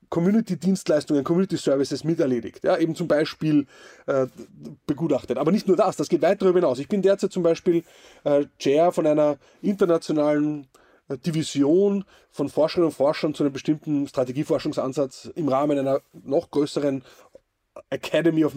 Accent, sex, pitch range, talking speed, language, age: German, male, 150-200 Hz, 145 wpm, German, 30-49